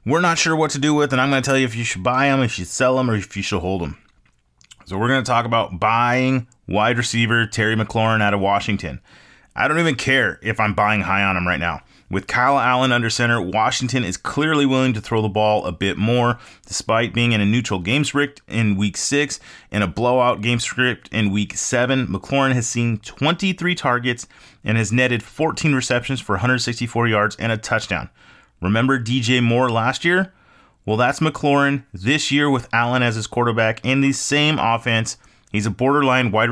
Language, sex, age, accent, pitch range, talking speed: English, male, 30-49, American, 105-130 Hz, 210 wpm